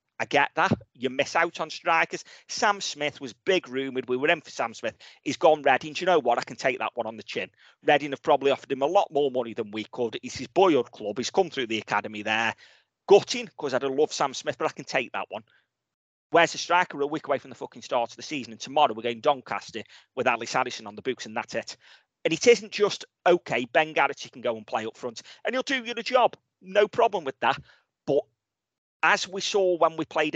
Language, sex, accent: English, male, British